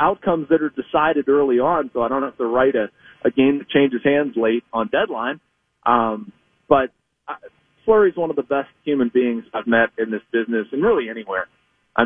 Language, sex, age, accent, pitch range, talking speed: English, male, 30-49, American, 115-155 Hz, 195 wpm